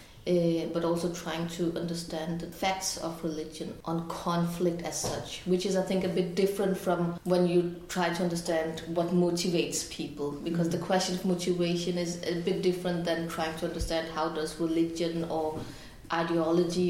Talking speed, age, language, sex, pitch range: 170 wpm, 20-39, Danish, female, 165-180 Hz